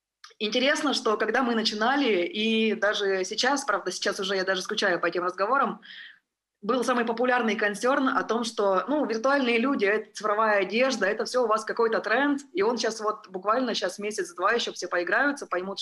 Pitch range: 185-235 Hz